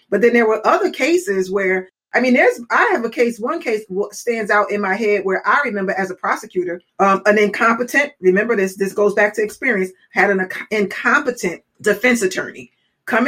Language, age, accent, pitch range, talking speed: English, 30-49, American, 185-235 Hz, 195 wpm